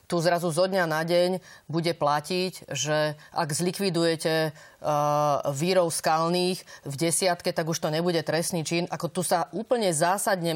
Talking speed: 150 wpm